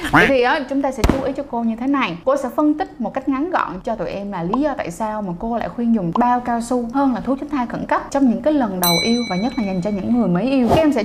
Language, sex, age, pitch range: Vietnamese, female, 20-39, 210-275 Hz